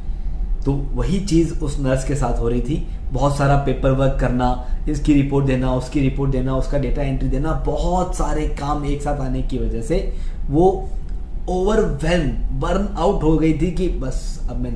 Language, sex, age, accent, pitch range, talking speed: Hindi, male, 20-39, native, 125-165 Hz, 185 wpm